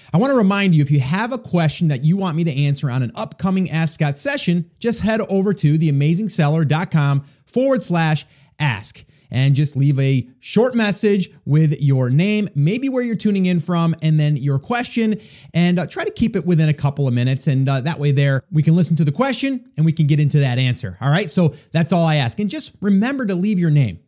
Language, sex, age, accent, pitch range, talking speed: English, male, 30-49, American, 145-195 Hz, 230 wpm